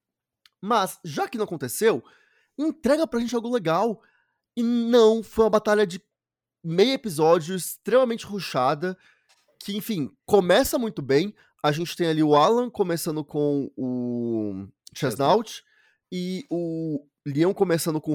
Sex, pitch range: male, 145-215 Hz